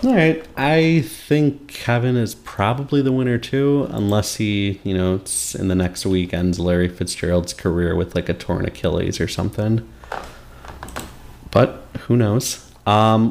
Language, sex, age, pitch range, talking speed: English, male, 30-49, 90-115 Hz, 150 wpm